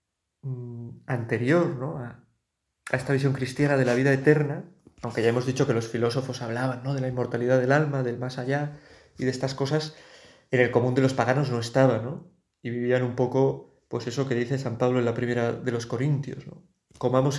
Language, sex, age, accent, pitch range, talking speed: Spanish, male, 30-49, Spanish, 120-145 Hz, 200 wpm